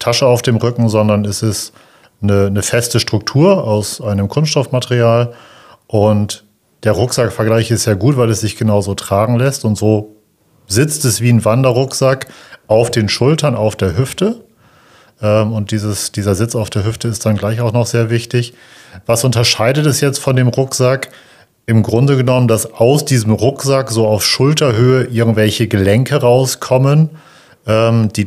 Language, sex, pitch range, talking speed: German, male, 110-130 Hz, 155 wpm